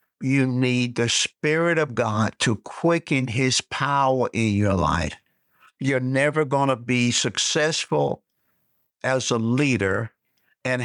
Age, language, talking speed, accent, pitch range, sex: 60-79, English, 125 wpm, American, 120-155 Hz, male